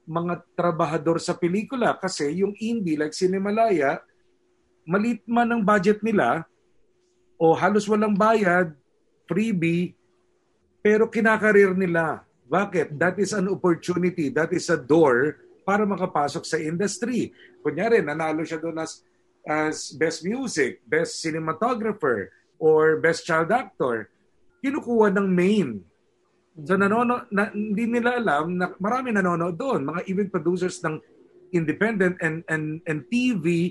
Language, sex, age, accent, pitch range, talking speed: Filipino, male, 50-69, native, 155-215 Hz, 125 wpm